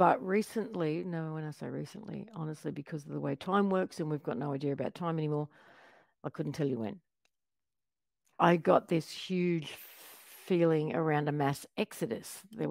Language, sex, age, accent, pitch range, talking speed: English, female, 50-69, Australian, 150-190 Hz, 175 wpm